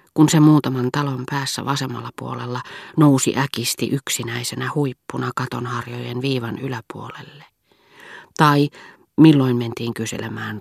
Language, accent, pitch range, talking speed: Finnish, native, 120-145 Hz, 100 wpm